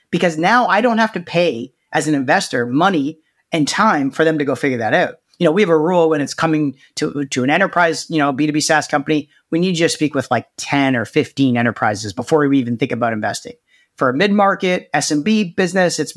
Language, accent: English, American